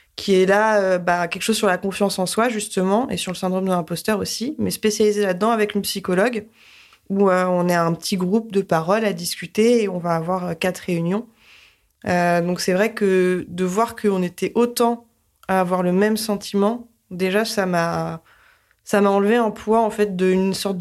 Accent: French